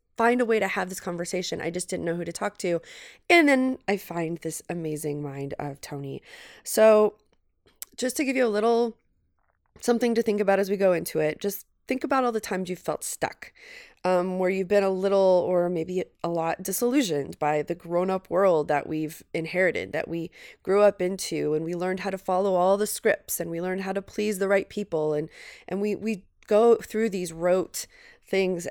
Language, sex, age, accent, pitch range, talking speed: English, female, 20-39, American, 170-210 Hz, 205 wpm